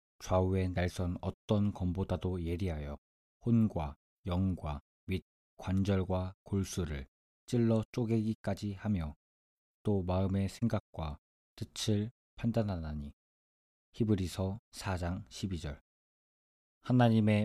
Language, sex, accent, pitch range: Korean, male, native, 75-105 Hz